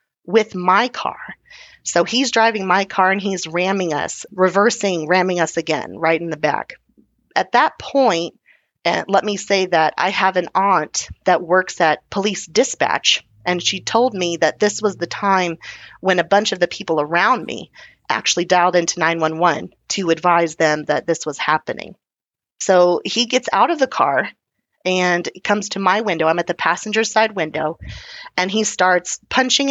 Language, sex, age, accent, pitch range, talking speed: English, female, 30-49, American, 175-220 Hz, 180 wpm